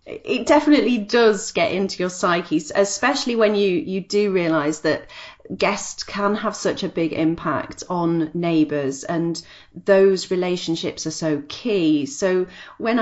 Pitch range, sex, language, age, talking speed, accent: 165-215 Hz, female, English, 40-59, 145 wpm, British